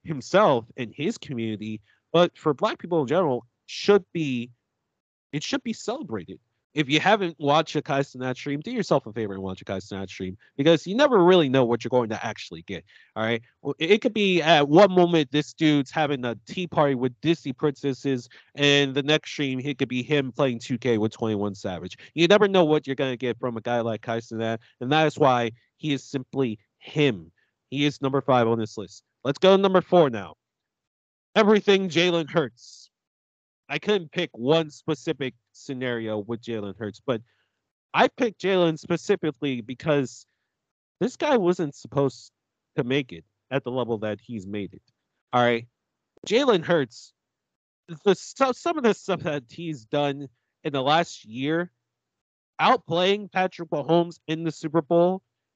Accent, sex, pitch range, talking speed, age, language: American, male, 115-170 Hz, 175 wpm, 30-49, English